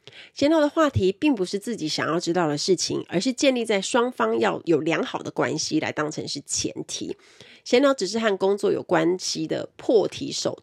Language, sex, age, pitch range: Chinese, female, 30-49, 165-255 Hz